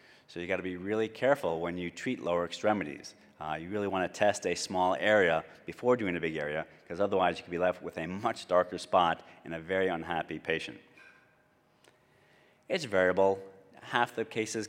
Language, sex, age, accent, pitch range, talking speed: English, male, 30-49, American, 85-105 Hz, 190 wpm